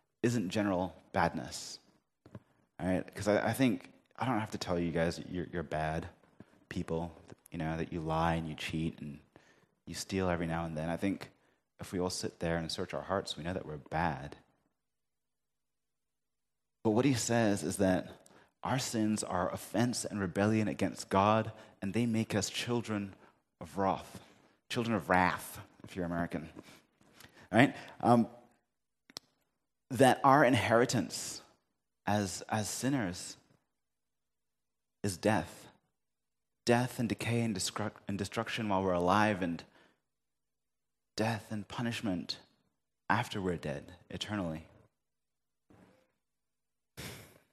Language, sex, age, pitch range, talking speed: English, male, 30-49, 90-110 Hz, 135 wpm